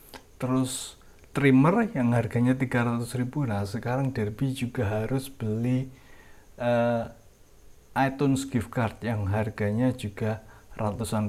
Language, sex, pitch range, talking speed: Indonesian, male, 110-135 Hz, 105 wpm